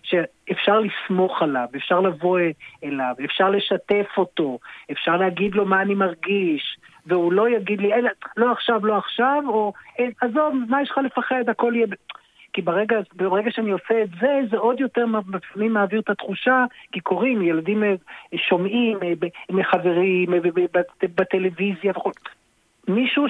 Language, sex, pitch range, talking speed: Hebrew, male, 180-220 Hz, 135 wpm